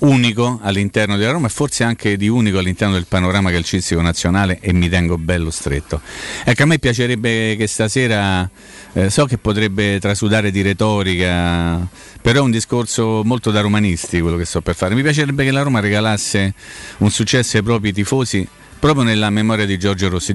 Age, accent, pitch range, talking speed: 40-59, native, 95-115 Hz, 180 wpm